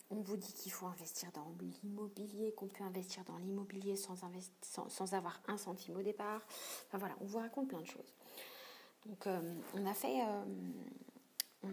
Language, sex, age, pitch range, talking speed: French, female, 40-59, 185-225 Hz, 190 wpm